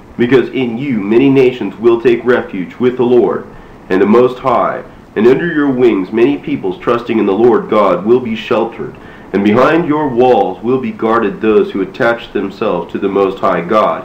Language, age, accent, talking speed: English, 40-59, American, 190 wpm